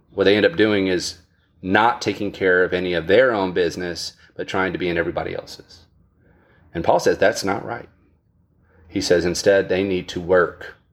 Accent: American